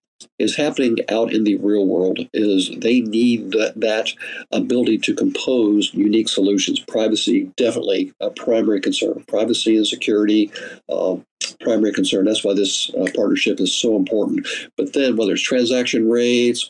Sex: male